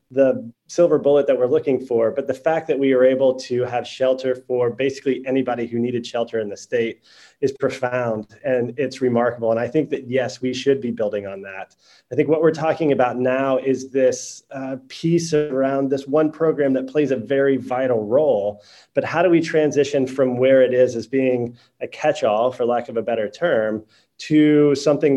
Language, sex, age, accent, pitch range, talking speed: English, male, 30-49, American, 125-145 Hz, 200 wpm